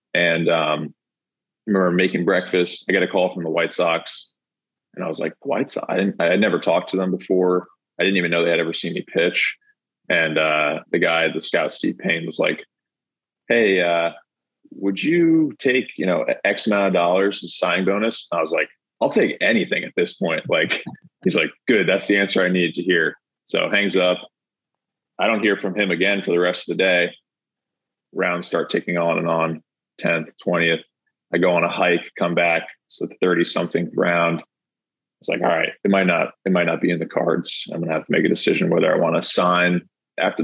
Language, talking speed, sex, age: English, 215 wpm, male, 20-39